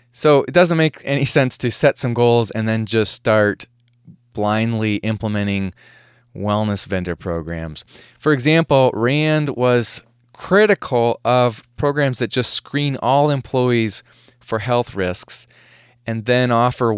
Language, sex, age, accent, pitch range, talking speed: English, male, 20-39, American, 110-130 Hz, 130 wpm